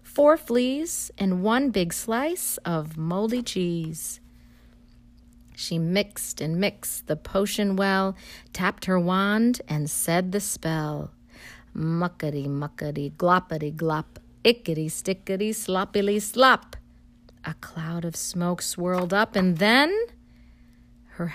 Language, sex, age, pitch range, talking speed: English, female, 40-59, 120-200 Hz, 110 wpm